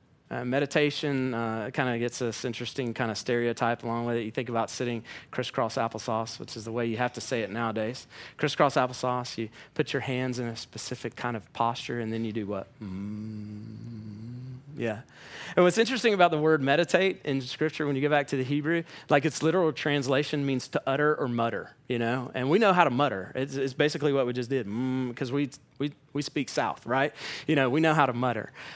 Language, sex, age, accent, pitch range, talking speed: English, male, 30-49, American, 125-165 Hz, 215 wpm